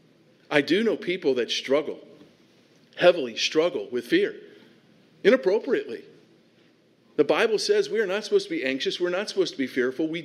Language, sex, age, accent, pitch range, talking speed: English, male, 50-69, American, 135-195 Hz, 165 wpm